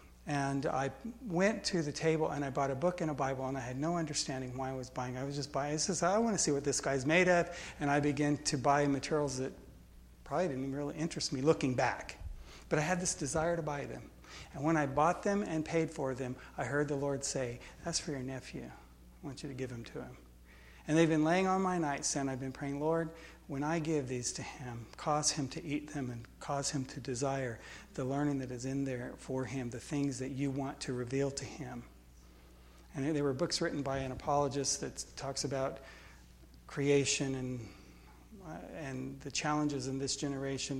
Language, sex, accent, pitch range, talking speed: English, male, American, 130-150 Hz, 220 wpm